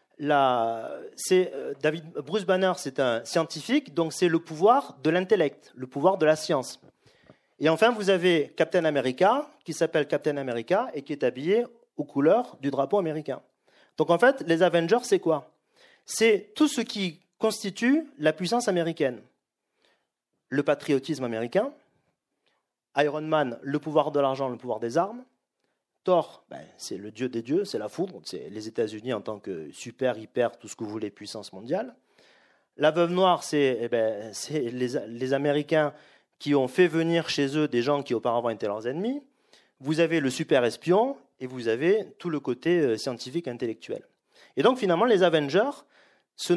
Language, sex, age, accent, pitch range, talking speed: French, male, 40-59, French, 140-190 Hz, 175 wpm